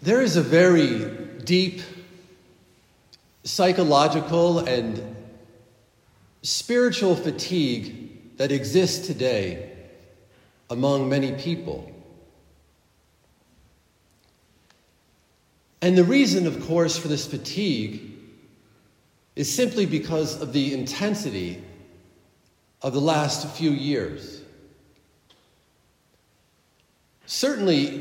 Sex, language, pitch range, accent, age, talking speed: male, English, 120-175 Hz, American, 40-59, 75 wpm